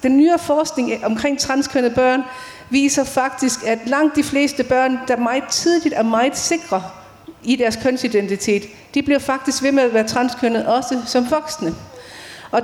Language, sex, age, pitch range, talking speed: Danish, female, 40-59, 225-275 Hz, 160 wpm